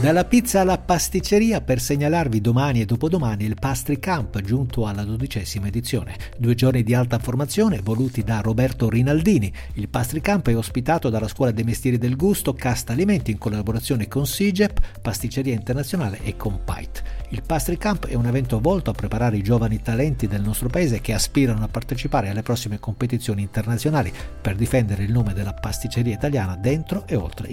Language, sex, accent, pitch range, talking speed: Italian, male, native, 110-145 Hz, 170 wpm